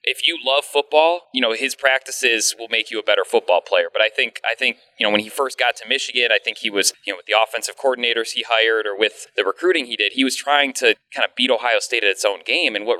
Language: English